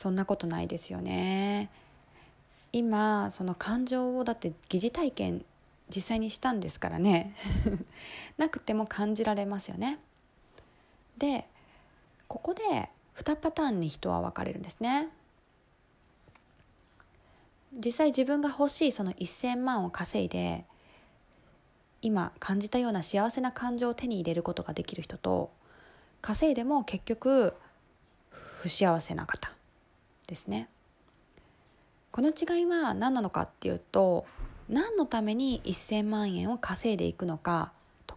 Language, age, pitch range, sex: Japanese, 20-39, 185-255 Hz, female